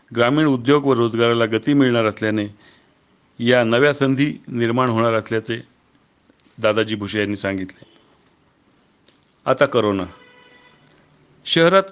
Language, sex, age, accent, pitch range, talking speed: Marathi, male, 40-59, native, 110-135 Hz, 100 wpm